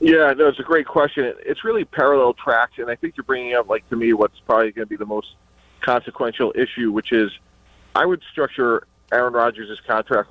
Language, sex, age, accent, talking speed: English, male, 40-59, American, 210 wpm